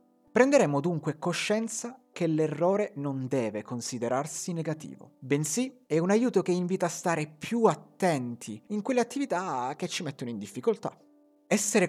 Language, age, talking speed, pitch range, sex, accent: Italian, 30-49, 140 wpm, 125-190 Hz, male, native